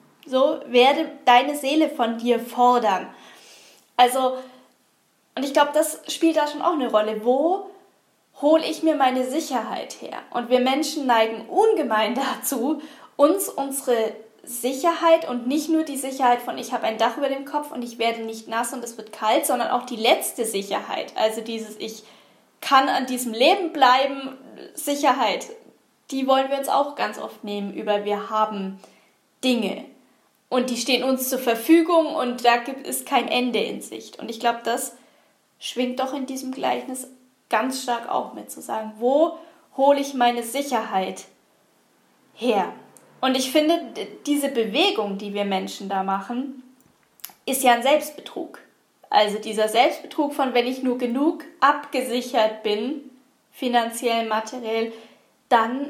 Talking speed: 155 wpm